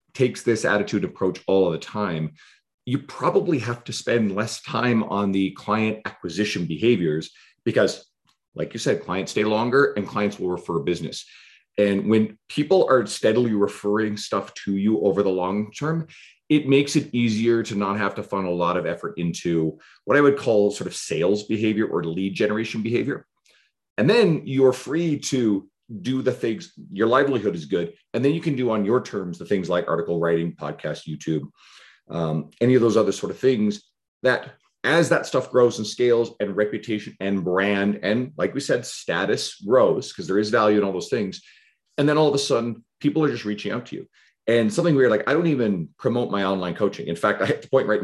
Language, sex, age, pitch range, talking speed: English, male, 40-59, 95-120 Hz, 205 wpm